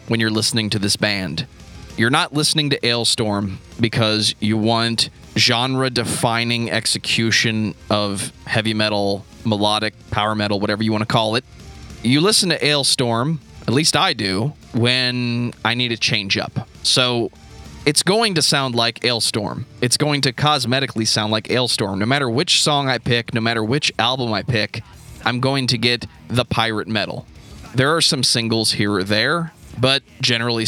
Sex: male